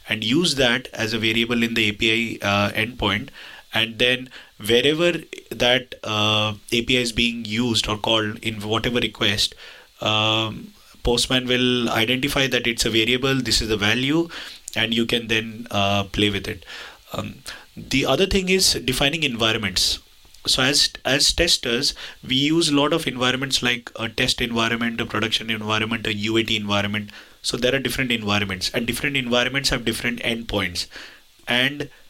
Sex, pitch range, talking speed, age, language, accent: male, 110-130 Hz, 155 wpm, 20-39, English, Indian